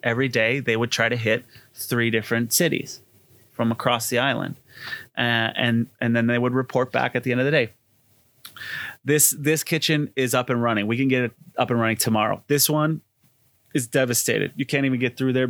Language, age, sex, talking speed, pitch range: English, 30-49, male, 205 wpm, 115-130 Hz